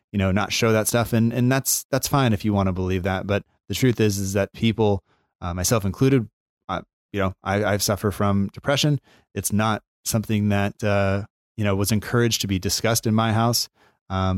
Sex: male